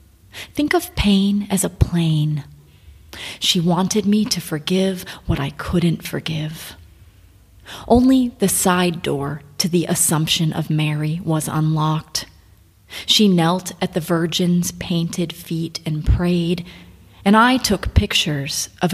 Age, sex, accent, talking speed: 30-49, female, American, 125 wpm